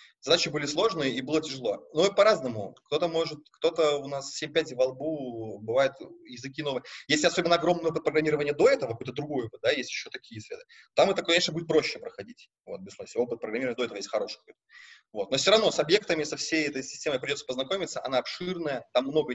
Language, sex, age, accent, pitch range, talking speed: Russian, male, 20-39, native, 130-175 Hz, 195 wpm